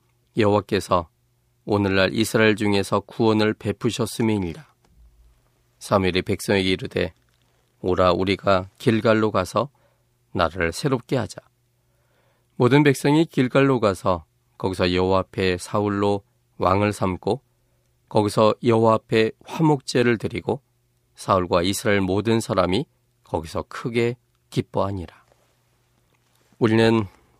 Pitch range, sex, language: 100-120 Hz, male, Korean